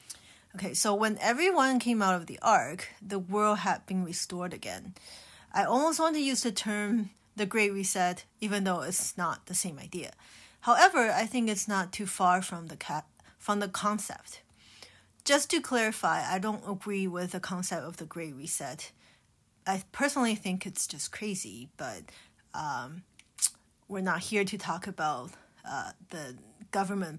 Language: English